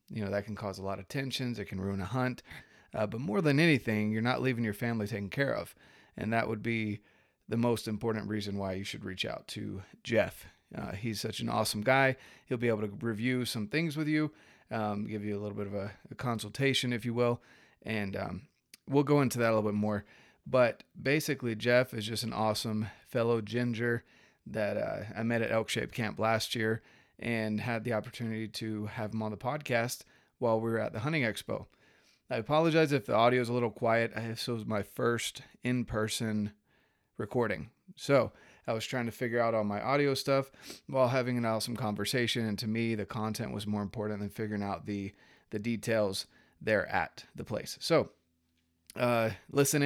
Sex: male